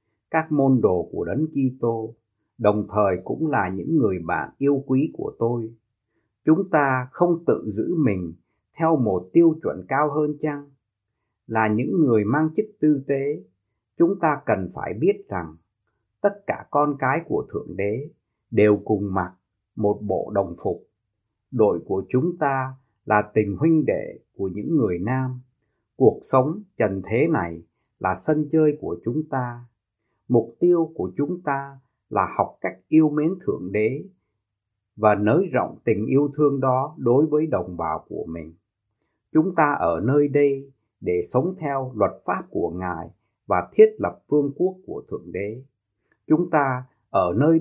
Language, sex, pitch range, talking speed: Vietnamese, male, 105-150 Hz, 165 wpm